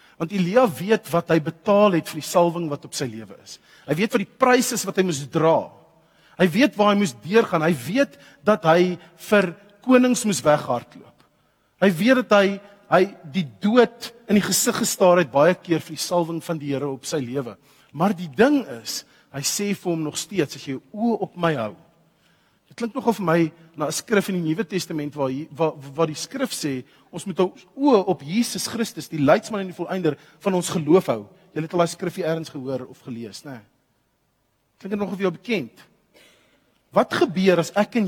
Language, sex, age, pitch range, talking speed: English, male, 40-59, 145-200 Hz, 205 wpm